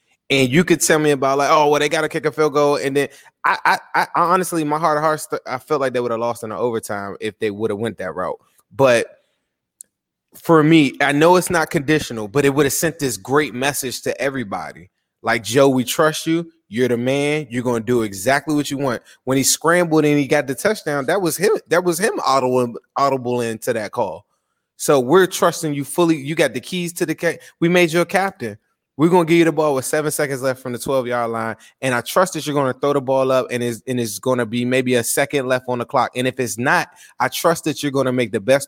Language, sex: English, male